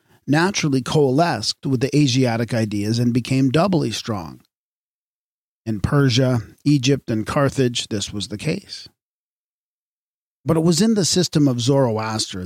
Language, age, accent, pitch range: English, 40-59, American, 110-145 Hz